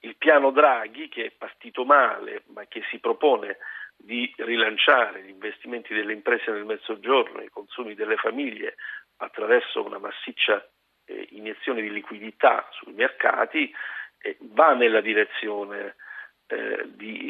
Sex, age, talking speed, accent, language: male, 50-69, 135 wpm, native, Italian